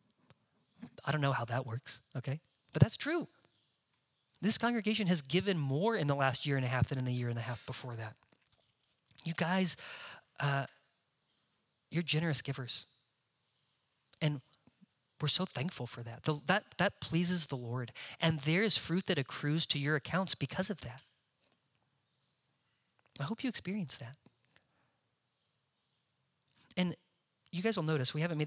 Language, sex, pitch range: English, male, 130-165 Hz